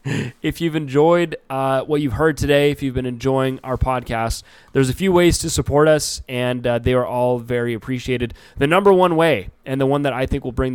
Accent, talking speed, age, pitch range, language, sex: American, 225 wpm, 20-39, 115-140 Hz, English, male